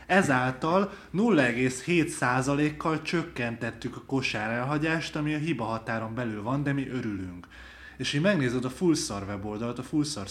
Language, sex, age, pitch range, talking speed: Hungarian, male, 20-39, 105-135 Hz, 135 wpm